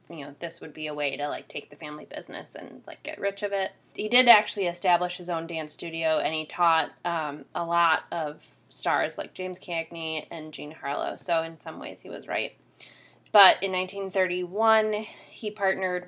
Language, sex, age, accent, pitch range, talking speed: English, female, 20-39, American, 165-195 Hz, 205 wpm